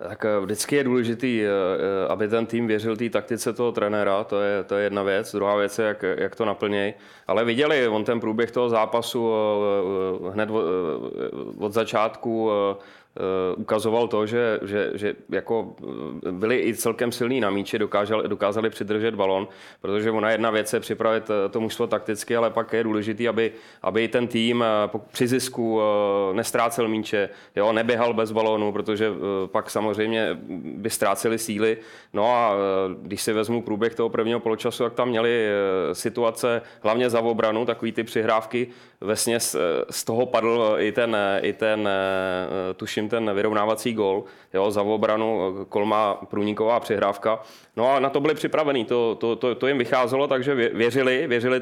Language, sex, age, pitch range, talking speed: Czech, male, 20-39, 105-115 Hz, 155 wpm